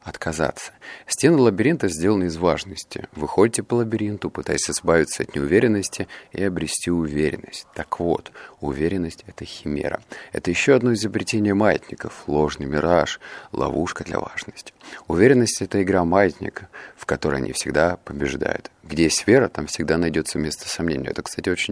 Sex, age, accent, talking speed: male, 30-49, native, 140 wpm